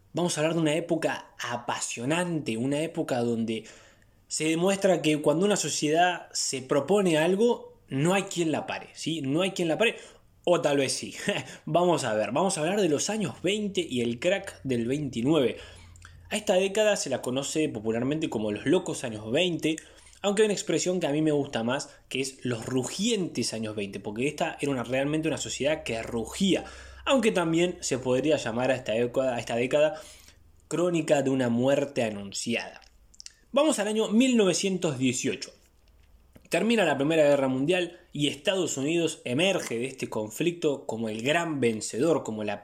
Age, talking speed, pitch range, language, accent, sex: 20-39, 170 wpm, 120-175 Hz, Spanish, Argentinian, male